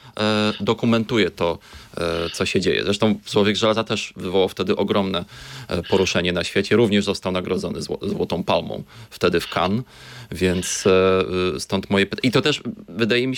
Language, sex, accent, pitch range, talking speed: Polish, male, native, 95-115 Hz, 145 wpm